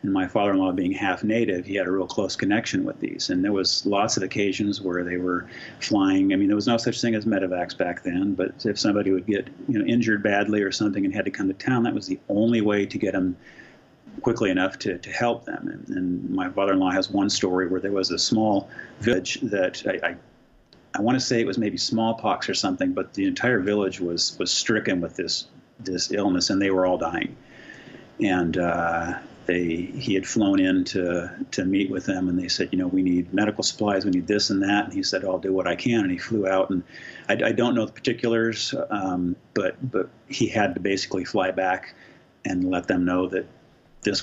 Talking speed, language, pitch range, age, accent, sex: 225 wpm, English, 90-115 Hz, 40-59, American, male